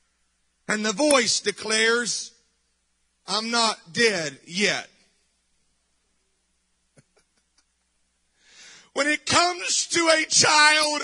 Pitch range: 255-315 Hz